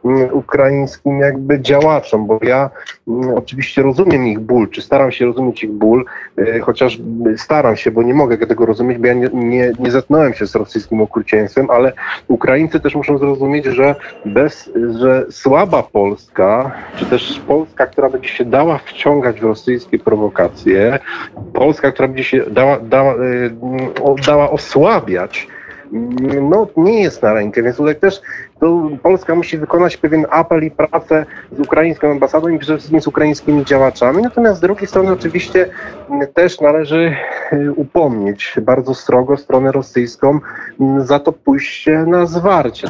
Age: 30-49